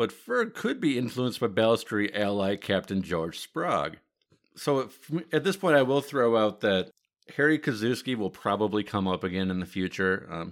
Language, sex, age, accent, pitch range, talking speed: English, male, 50-69, American, 90-125 Hz, 175 wpm